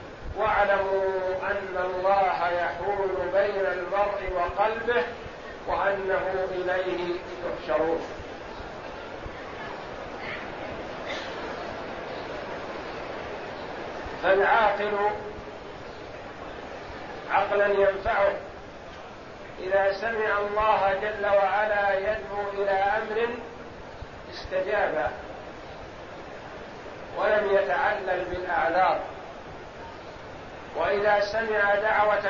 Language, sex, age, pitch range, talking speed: Arabic, male, 50-69, 180-210 Hz, 50 wpm